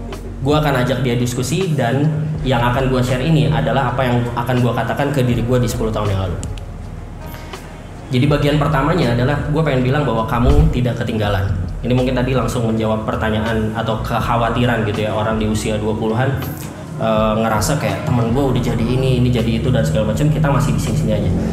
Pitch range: 115-140 Hz